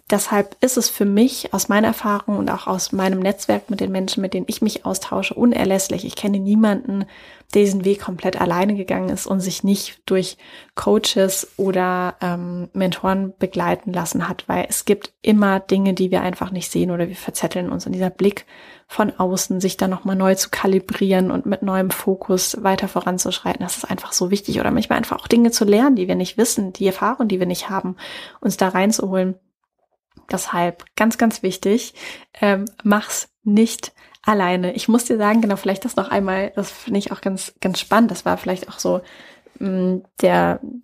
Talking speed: 190 wpm